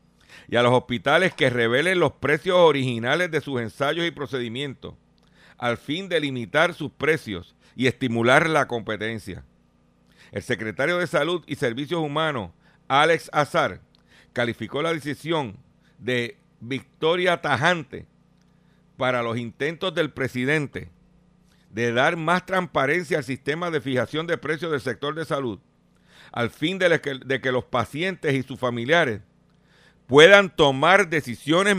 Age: 50-69